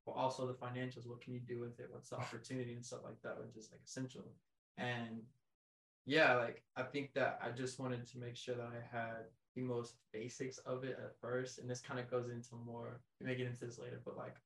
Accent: American